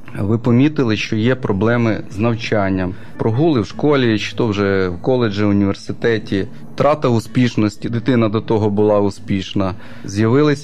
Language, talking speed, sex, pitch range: Ukrainian, 135 wpm, male, 105-125 Hz